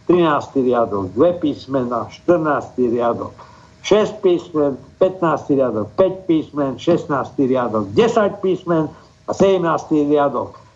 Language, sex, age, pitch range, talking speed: Slovak, male, 60-79, 125-165 Hz, 105 wpm